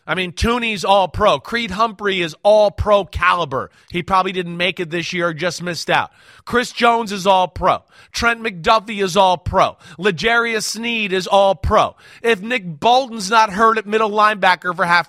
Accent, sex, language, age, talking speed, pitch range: American, male, English, 30-49, 165 wpm, 175-230 Hz